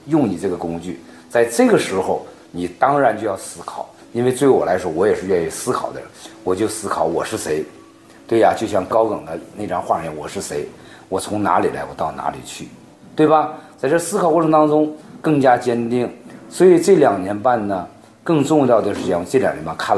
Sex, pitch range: male, 95-150 Hz